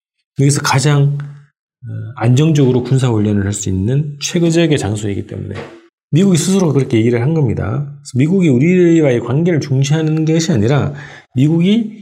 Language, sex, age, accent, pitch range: Korean, male, 40-59, native, 105-150 Hz